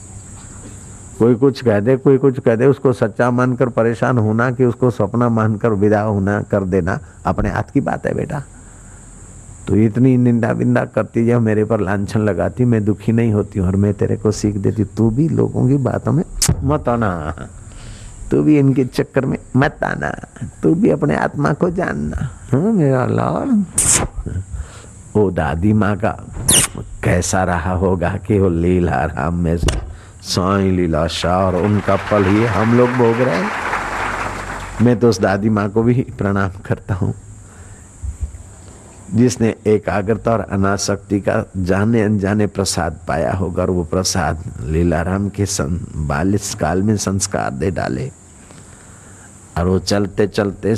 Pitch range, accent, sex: 95-115 Hz, native, male